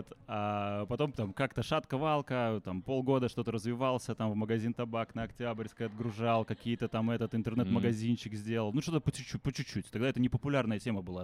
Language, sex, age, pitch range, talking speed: Russian, male, 20-39, 95-120 Hz, 180 wpm